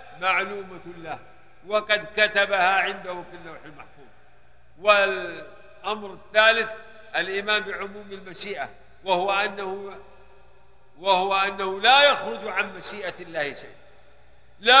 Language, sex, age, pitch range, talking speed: Arabic, male, 50-69, 180-220 Hz, 95 wpm